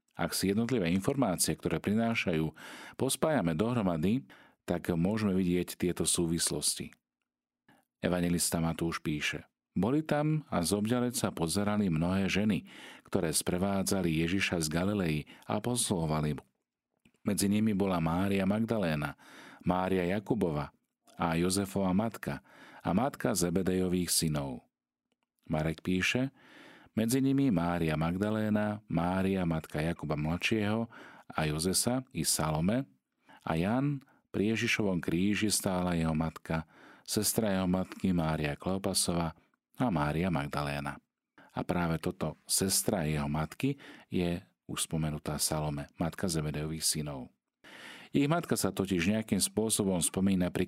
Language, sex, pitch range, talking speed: Slovak, male, 80-105 Hz, 110 wpm